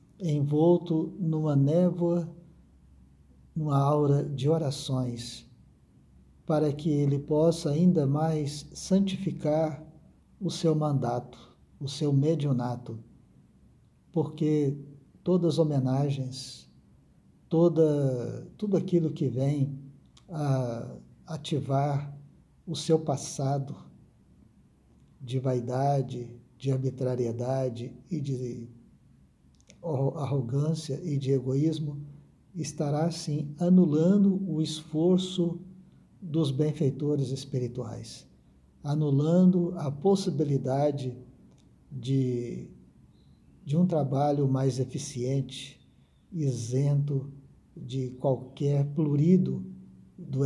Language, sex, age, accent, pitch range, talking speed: Portuguese, male, 60-79, Brazilian, 130-160 Hz, 80 wpm